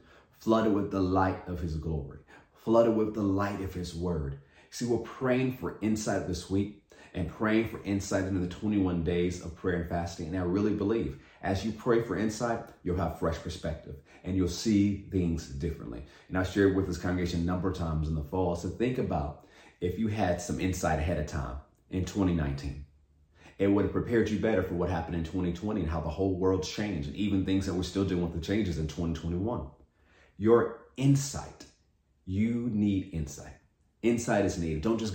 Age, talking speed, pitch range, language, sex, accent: 30-49, 200 wpm, 85-110 Hz, English, male, American